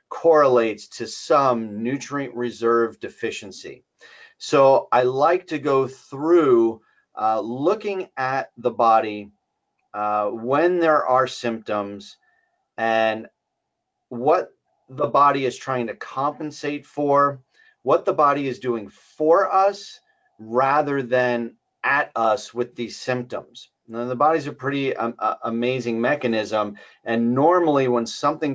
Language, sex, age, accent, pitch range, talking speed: English, male, 40-59, American, 115-145 Hz, 125 wpm